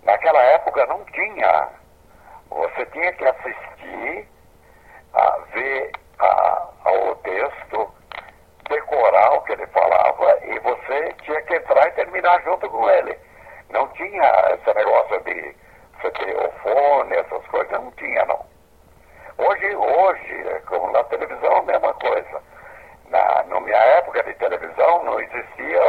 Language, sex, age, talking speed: Portuguese, male, 60-79, 140 wpm